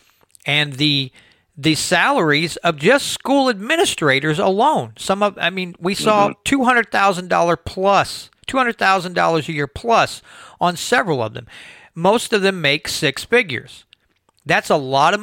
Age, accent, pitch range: 40-59, American, 140-185 Hz